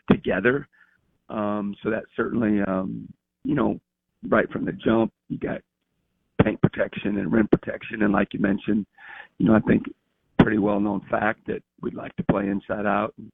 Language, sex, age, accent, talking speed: English, male, 50-69, American, 175 wpm